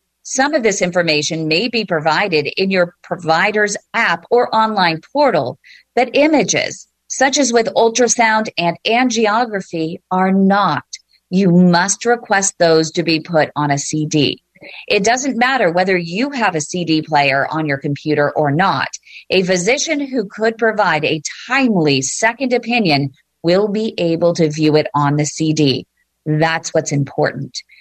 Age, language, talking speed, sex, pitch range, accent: 40-59, English, 150 wpm, female, 155-230 Hz, American